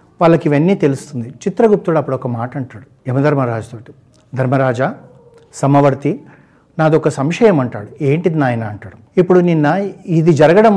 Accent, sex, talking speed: native, male, 125 wpm